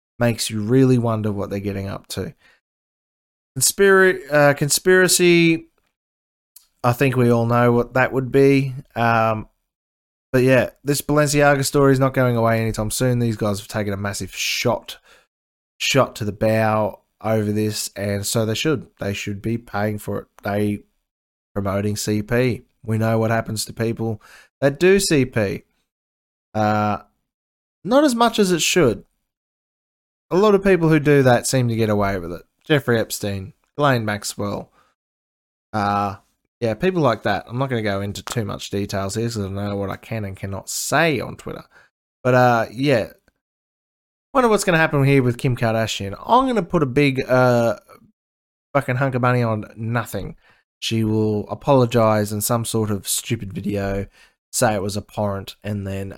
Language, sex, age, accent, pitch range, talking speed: English, male, 20-39, Australian, 100-135 Hz, 170 wpm